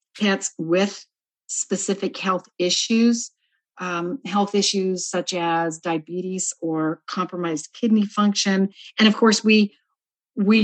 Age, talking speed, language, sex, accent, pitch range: 50-69, 115 wpm, English, female, American, 175-200 Hz